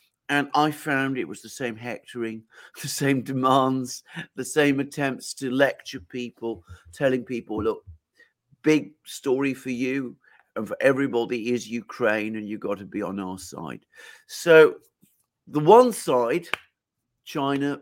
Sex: male